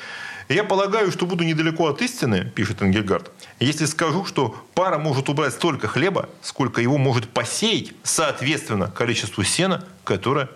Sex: male